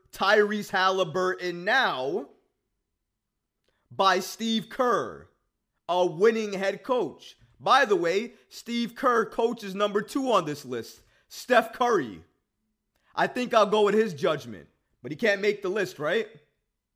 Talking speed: 130 wpm